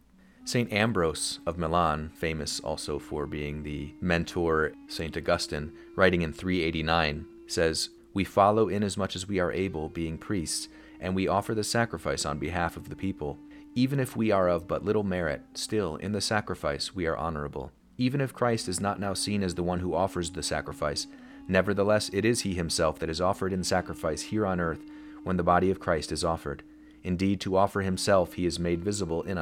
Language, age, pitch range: English, 30-49, 80-105 Hz